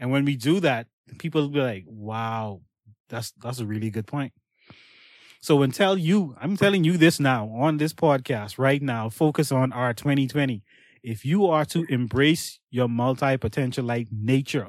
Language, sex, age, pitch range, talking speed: English, male, 20-39, 125-150 Hz, 170 wpm